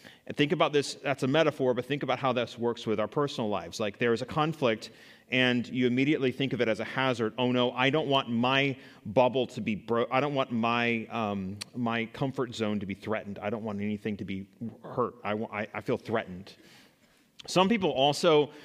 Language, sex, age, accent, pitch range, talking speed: English, male, 30-49, American, 125-160 Hz, 220 wpm